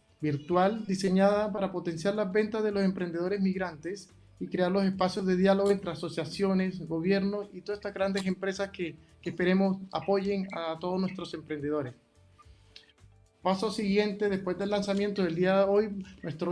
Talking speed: 155 wpm